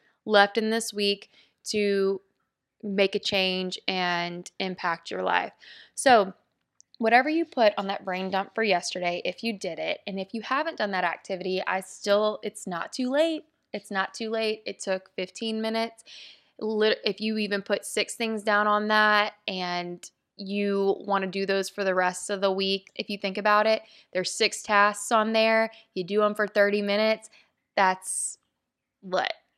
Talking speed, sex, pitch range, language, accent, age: 175 wpm, female, 185-220 Hz, English, American, 20-39